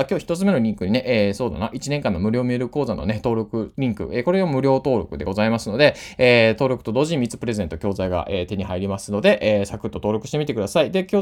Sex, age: male, 20-39